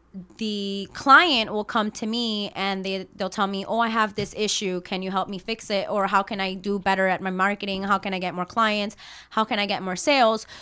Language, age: English, 20-39